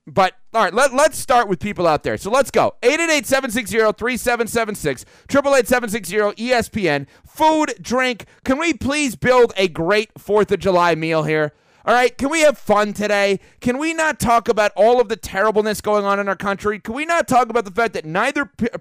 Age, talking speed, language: 30-49, 195 wpm, English